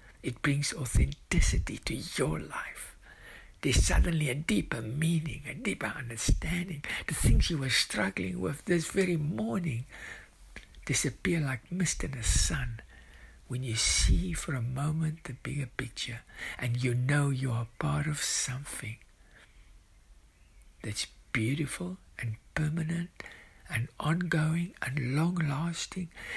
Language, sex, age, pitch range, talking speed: English, male, 60-79, 115-160 Hz, 125 wpm